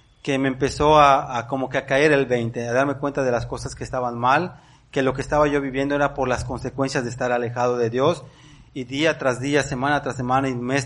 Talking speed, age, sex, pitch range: 245 wpm, 30-49, male, 120-135 Hz